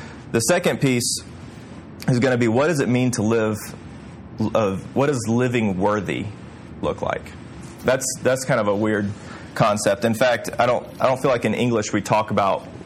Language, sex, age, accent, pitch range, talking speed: English, male, 30-49, American, 105-135 Hz, 185 wpm